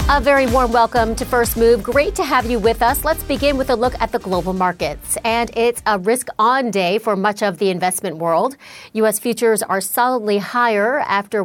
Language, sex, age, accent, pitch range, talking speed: English, female, 40-59, American, 200-265 Hz, 205 wpm